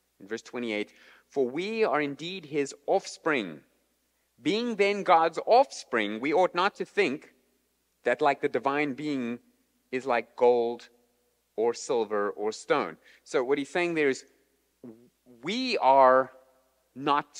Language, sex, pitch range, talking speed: English, male, 120-190 Hz, 130 wpm